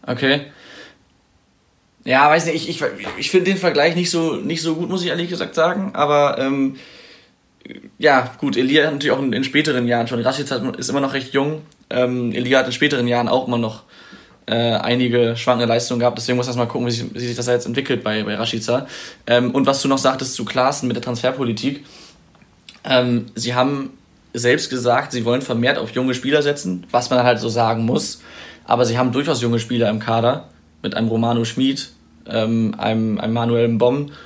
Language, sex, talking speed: German, male, 200 wpm